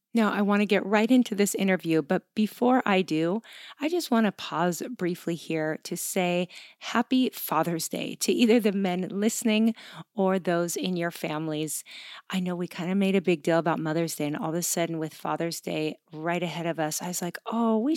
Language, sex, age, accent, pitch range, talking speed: English, female, 30-49, American, 165-210 Hz, 215 wpm